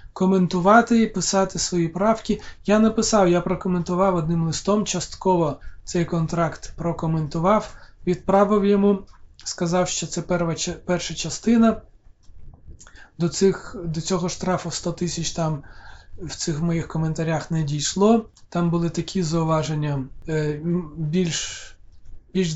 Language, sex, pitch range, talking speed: Ukrainian, male, 160-185 Hz, 115 wpm